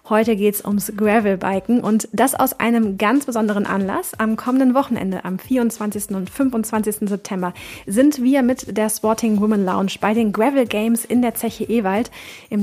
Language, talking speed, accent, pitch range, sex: German, 170 wpm, German, 205-250 Hz, female